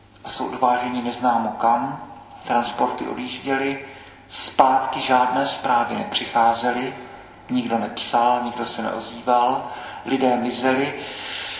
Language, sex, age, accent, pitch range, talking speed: Czech, male, 40-59, native, 120-130 Hz, 90 wpm